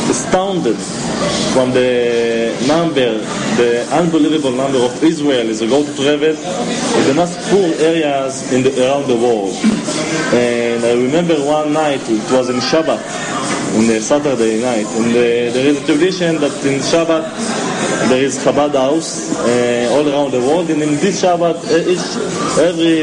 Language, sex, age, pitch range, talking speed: English, male, 30-49, 130-170 Hz, 160 wpm